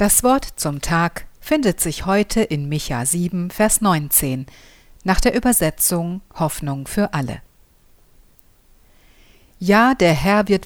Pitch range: 140-205 Hz